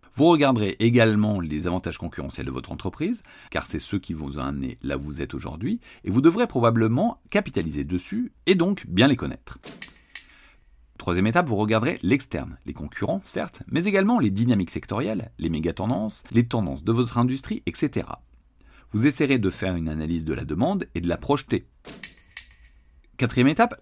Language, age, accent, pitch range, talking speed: French, 40-59, French, 80-130 Hz, 175 wpm